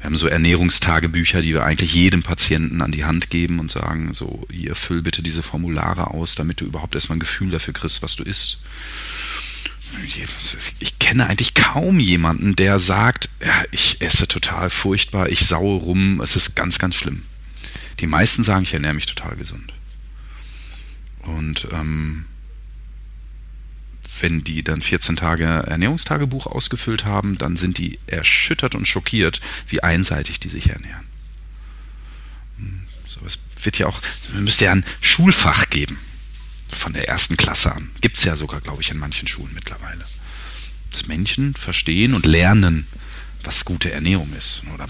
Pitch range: 75-100 Hz